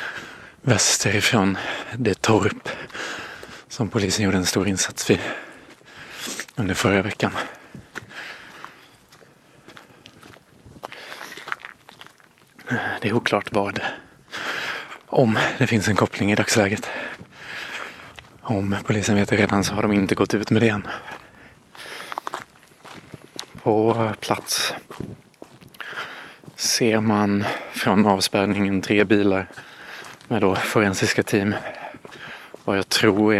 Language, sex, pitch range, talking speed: Swedish, male, 100-110 Hz, 100 wpm